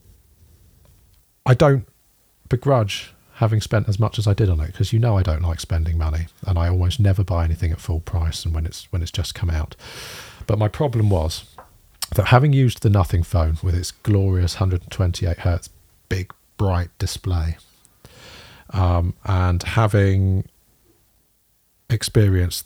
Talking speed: 155 wpm